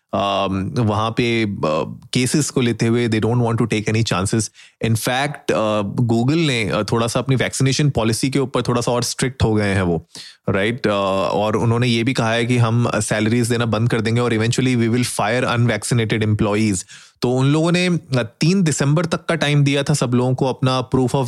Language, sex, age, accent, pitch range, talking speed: Hindi, male, 30-49, native, 110-125 Hz, 195 wpm